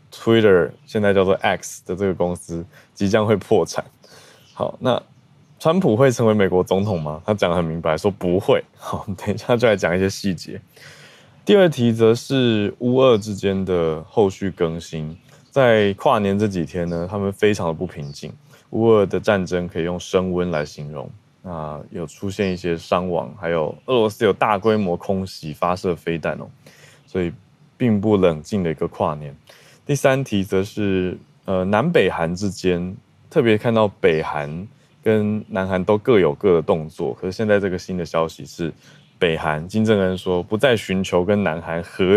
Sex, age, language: male, 20-39, Chinese